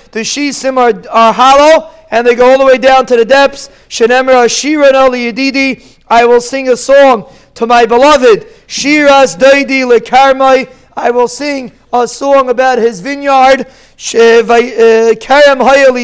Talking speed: 155 wpm